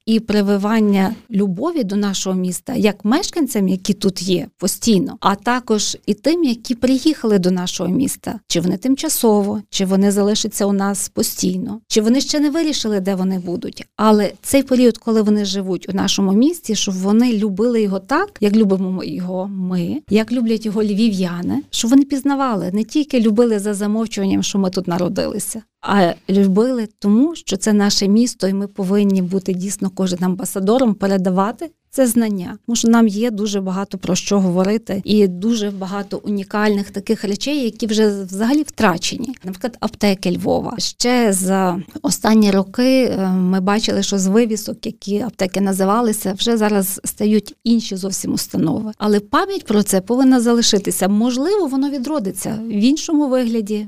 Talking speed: 155 wpm